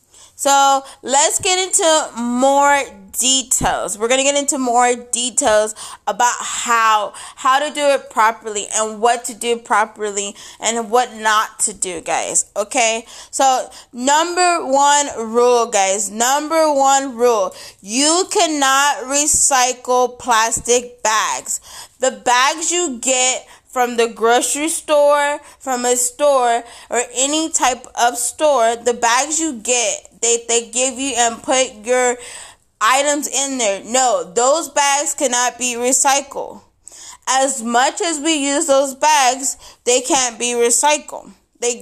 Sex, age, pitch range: female, 20-39, 235-285 Hz